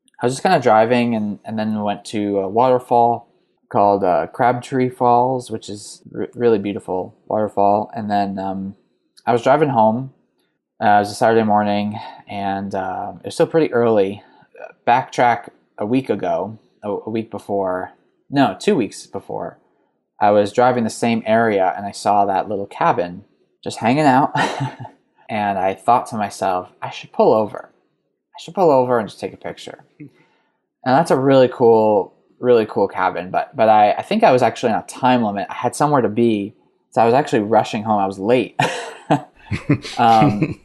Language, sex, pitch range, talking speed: English, male, 100-125 Hz, 180 wpm